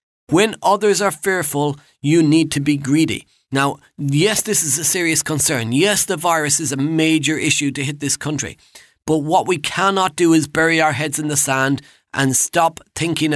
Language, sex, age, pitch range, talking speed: English, male, 30-49, 145-175 Hz, 190 wpm